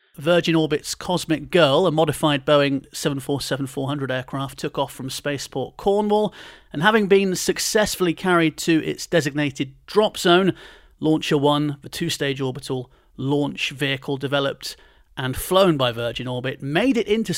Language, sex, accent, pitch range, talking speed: English, male, British, 140-175 Hz, 140 wpm